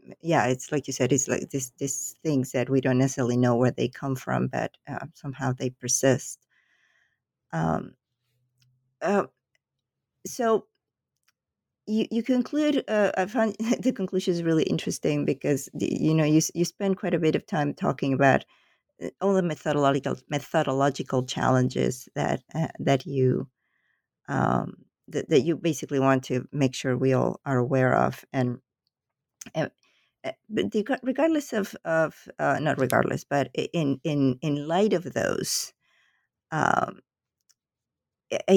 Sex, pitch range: female, 130-165 Hz